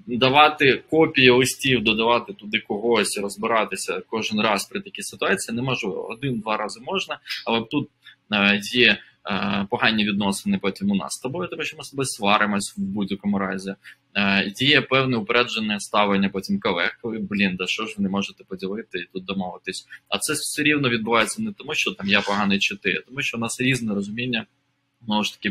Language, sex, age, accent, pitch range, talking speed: Ukrainian, male, 20-39, native, 100-135 Hz, 175 wpm